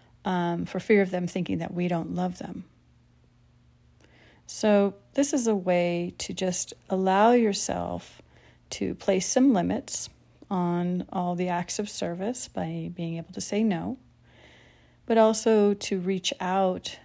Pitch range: 170-205 Hz